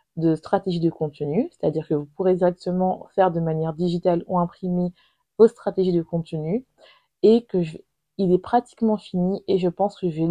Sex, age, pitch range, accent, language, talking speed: female, 20-39, 170-200 Hz, French, French, 180 wpm